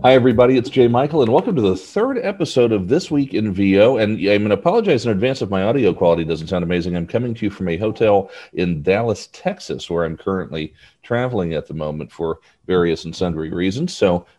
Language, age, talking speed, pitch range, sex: English, 40-59, 225 wpm, 85-115 Hz, male